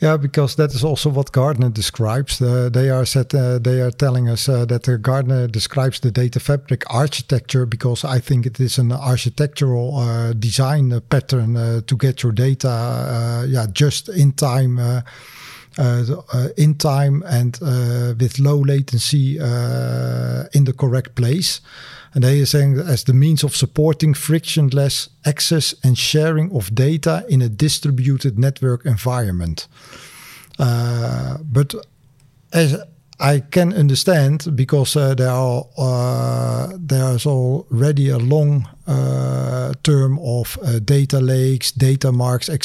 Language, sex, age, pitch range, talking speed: Dutch, male, 50-69, 125-150 Hz, 145 wpm